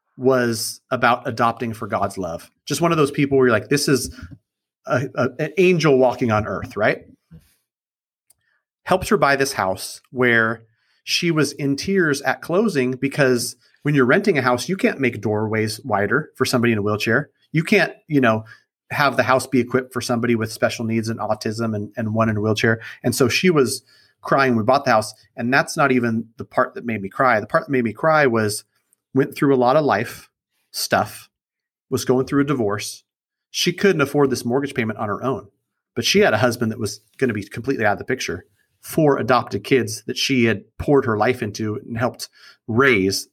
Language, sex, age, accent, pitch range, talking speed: English, male, 30-49, American, 110-135 Hz, 210 wpm